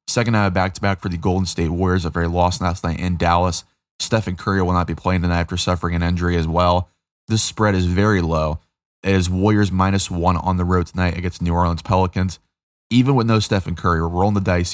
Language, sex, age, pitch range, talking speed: English, male, 20-39, 85-95 Hz, 230 wpm